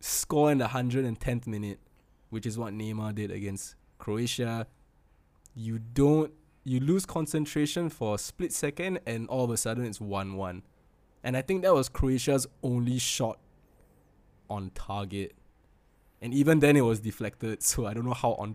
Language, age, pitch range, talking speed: English, 20-39, 100-130 Hz, 160 wpm